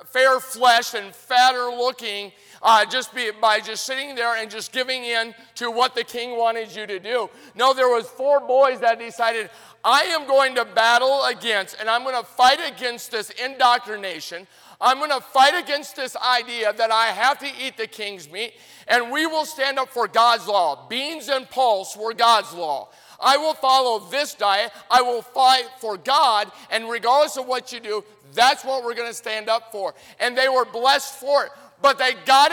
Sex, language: male, English